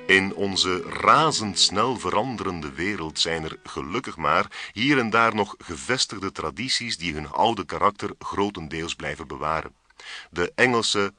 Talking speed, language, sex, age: 130 wpm, Dutch, male, 40-59